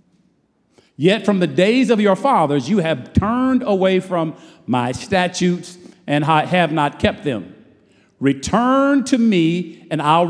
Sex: male